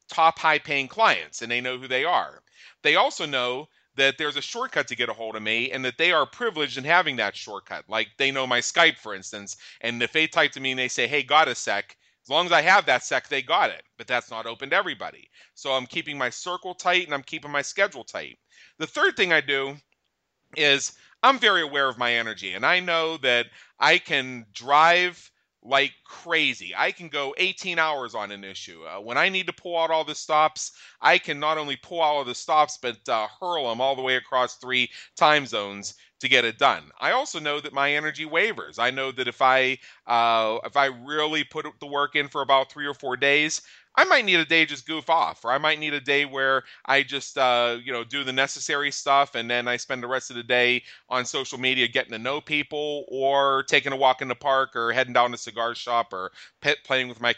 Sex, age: male, 40-59